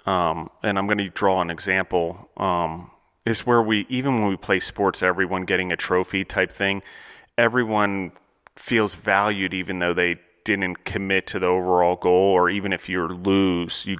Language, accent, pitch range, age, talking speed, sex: English, American, 90-105 Hz, 30-49, 175 wpm, male